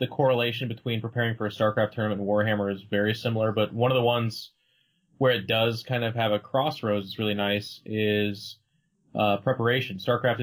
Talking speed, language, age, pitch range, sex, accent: 190 wpm, English, 20-39, 105-125 Hz, male, American